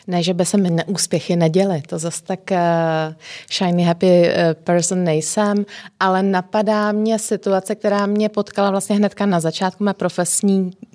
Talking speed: 155 wpm